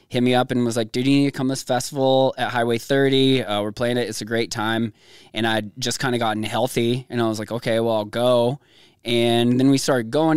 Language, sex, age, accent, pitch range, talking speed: English, male, 20-39, American, 115-130 Hz, 260 wpm